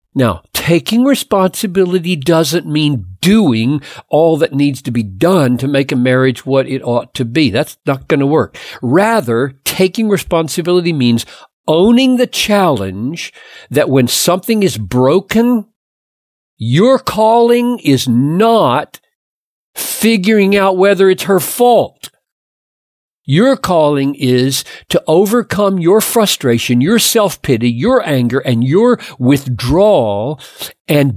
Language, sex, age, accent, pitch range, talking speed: English, male, 50-69, American, 130-195 Hz, 120 wpm